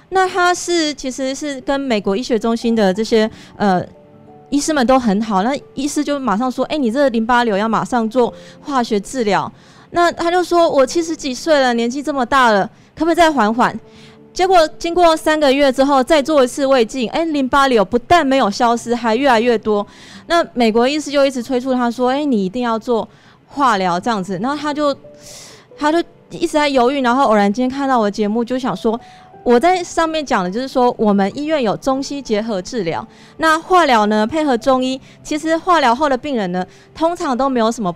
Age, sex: 20-39, female